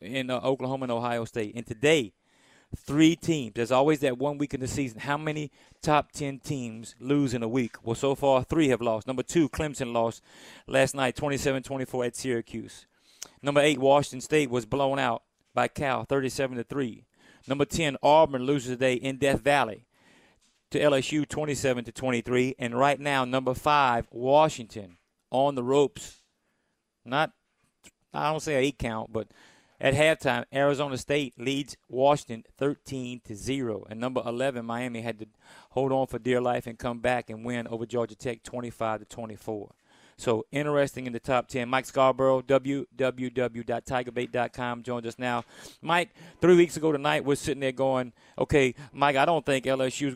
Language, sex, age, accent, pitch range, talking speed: English, male, 30-49, American, 120-145 Hz, 165 wpm